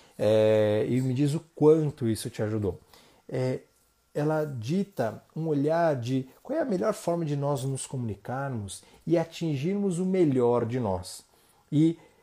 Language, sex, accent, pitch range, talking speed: Portuguese, male, Brazilian, 115-150 Hz, 140 wpm